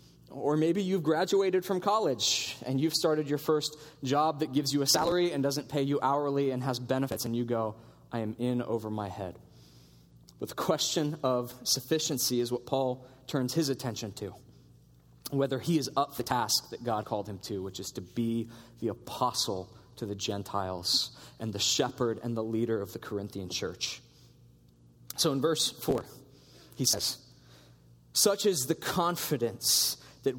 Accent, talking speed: American, 170 wpm